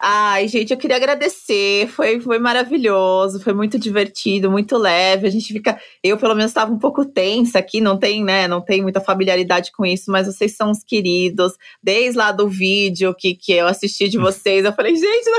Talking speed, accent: 205 wpm, Brazilian